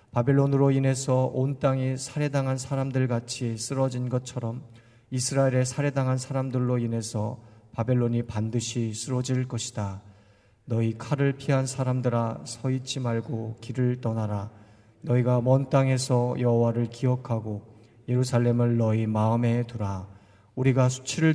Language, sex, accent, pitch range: Korean, male, native, 115-130 Hz